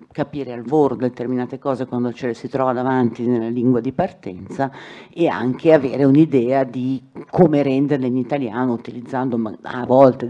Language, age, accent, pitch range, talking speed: Italian, 50-69, native, 120-145 Hz, 155 wpm